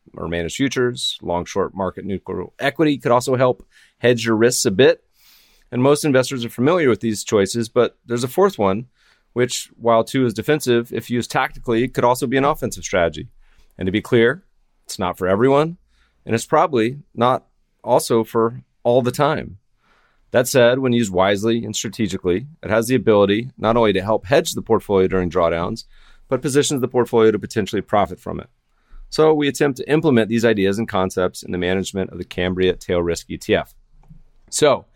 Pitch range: 100-130 Hz